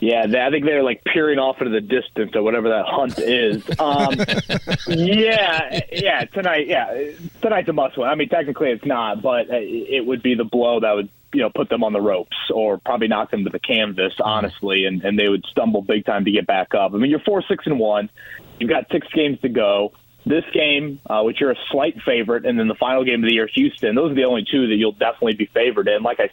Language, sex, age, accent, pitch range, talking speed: English, male, 30-49, American, 110-145 Hz, 230 wpm